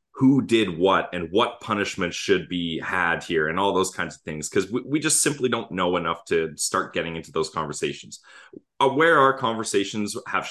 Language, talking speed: English, 190 wpm